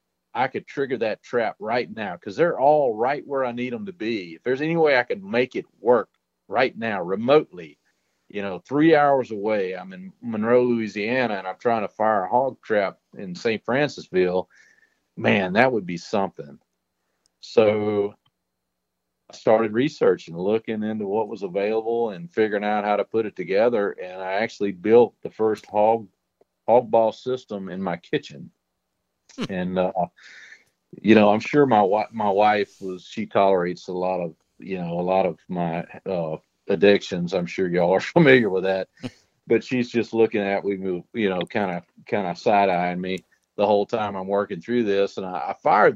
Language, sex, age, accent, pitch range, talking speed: English, male, 40-59, American, 95-115 Hz, 185 wpm